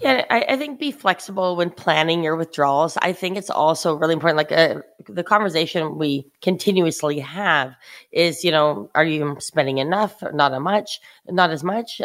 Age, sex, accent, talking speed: 30-49, female, American, 175 wpm